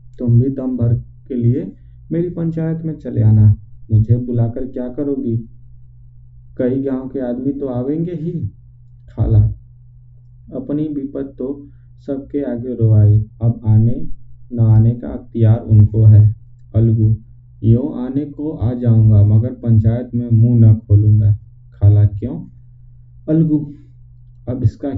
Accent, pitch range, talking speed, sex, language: native, 110-135 Hz, 130 wpm, male, Hindi